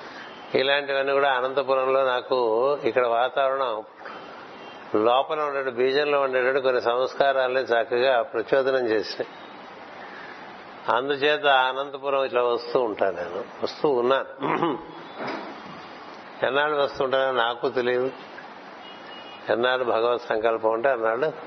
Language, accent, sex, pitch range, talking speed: Telugu, native, male, 120-135 Hz, 90 wpm